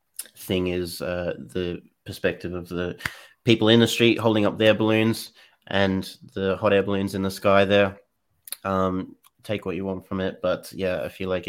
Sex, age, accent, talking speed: male, 30-49, Australian, 190 wpm